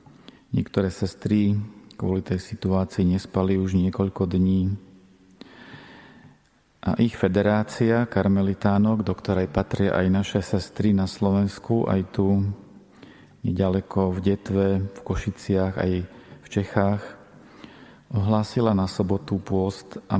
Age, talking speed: 40-59, 105 wpm